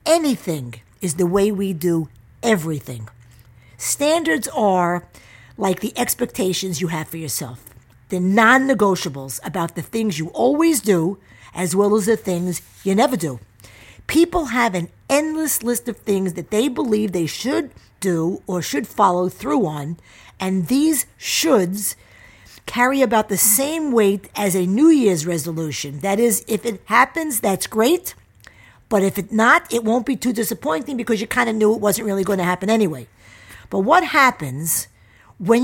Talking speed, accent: 160 wpm, American